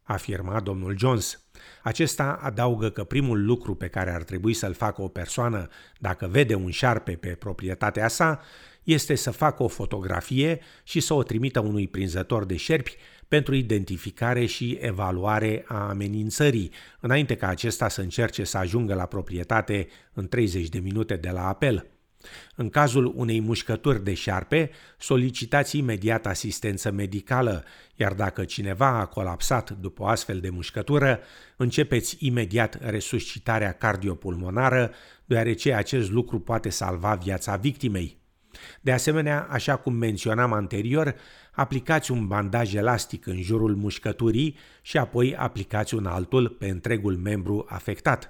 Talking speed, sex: 140 wpm, male